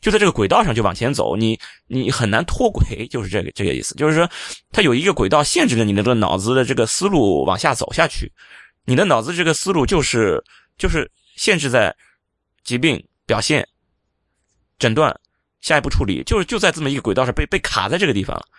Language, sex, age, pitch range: Chinese, male, 20-39, 115-170 Hz